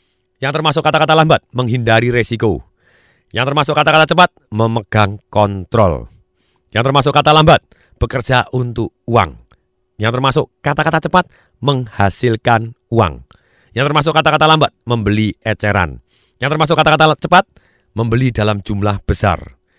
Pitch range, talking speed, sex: 110-155 Hz, 120 wpm, male